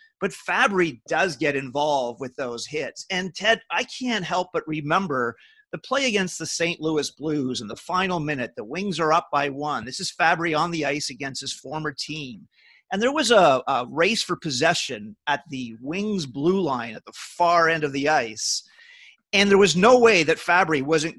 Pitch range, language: 145-195 Hz, English